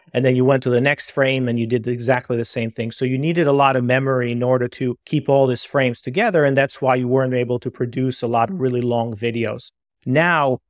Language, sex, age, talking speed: English, male, 30-49, 250 wpm